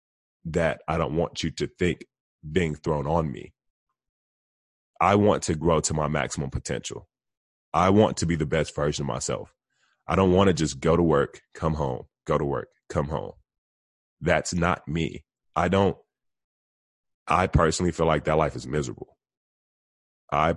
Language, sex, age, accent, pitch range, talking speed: English, male, 30-49, American, 70-85 Hz, 165 wpm